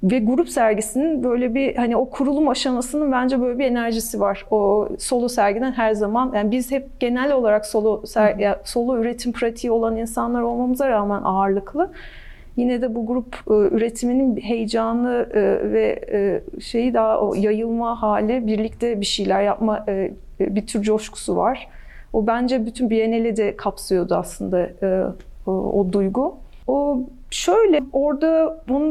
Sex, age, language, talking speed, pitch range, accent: female, 40-59, Turkish, 150 wpm, 215-270 Hz, native